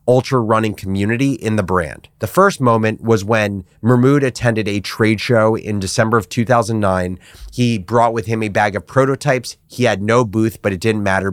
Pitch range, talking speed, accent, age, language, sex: 100-120 Hz, 190 wpm, American, 30-49, English, male